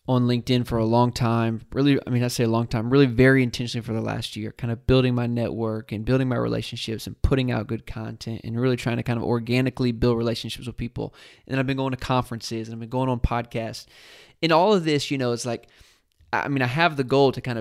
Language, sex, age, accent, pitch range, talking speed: English, male, 20-39, American, 115-140 Hz, 250 wpm